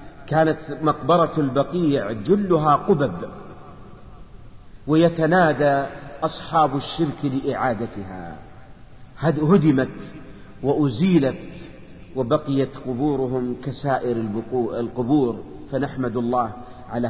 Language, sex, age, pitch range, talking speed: Arabic, male, 50-69, 135-165 Hz, 65 wpm